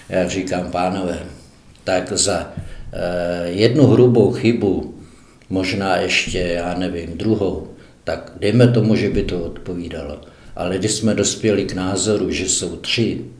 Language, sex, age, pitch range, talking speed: Czech, male, 60-79, 90-105 Hz, 130 wpm